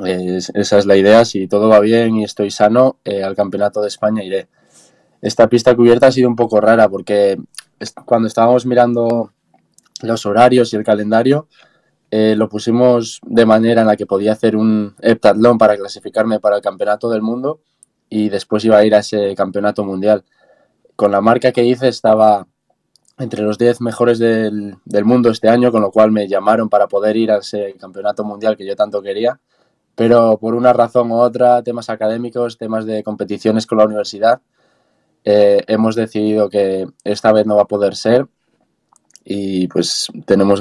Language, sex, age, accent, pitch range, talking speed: Spanish, male, 20-39, Spanish, 100-115 Hz, 180 wpm